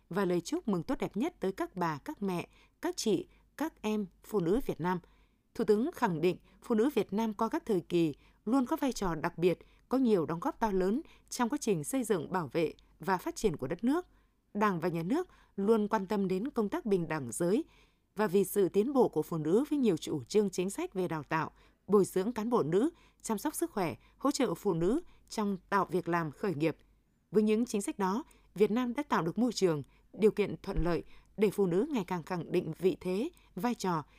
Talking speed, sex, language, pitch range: 235 wpm, female, Vietnamese, 175-235 Hz